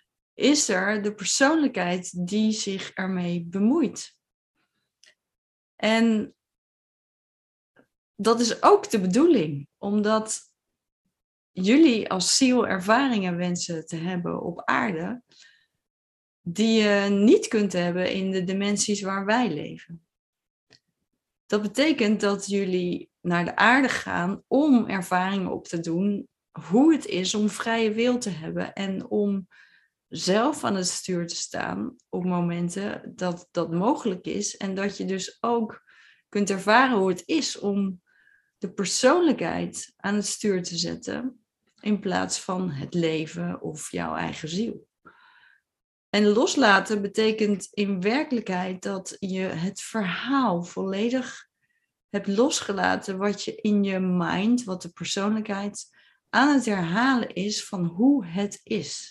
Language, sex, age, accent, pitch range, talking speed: Dutch, female, 20-39, Dutch, 185-230 Hz, 125 wpm